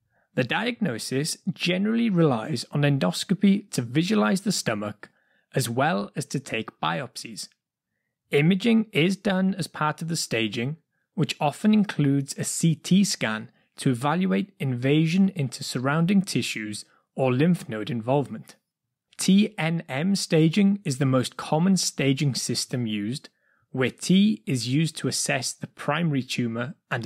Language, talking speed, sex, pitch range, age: English, 130 wpm, male, 130-185 Hz, 20-39